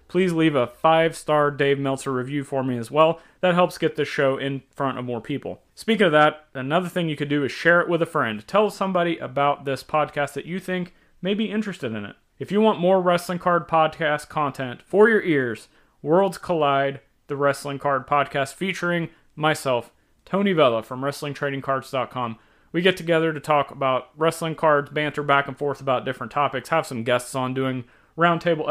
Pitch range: 135-165 Hz